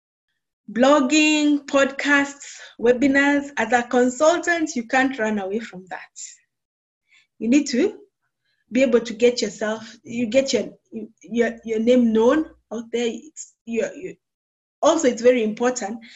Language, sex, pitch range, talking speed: English, female, 215-275 Hz, 125 wpm